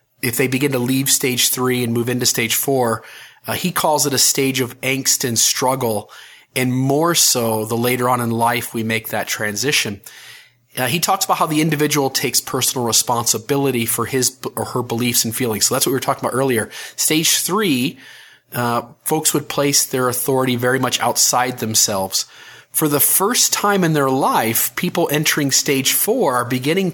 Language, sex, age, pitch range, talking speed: English, male, 30-49, 120-155 Hz, 185 wpm